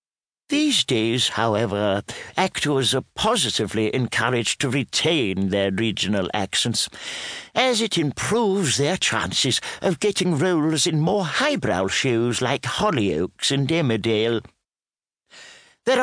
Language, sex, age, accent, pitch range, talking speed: English, male, 60-79, British, 110-170 Hz, 110 wpm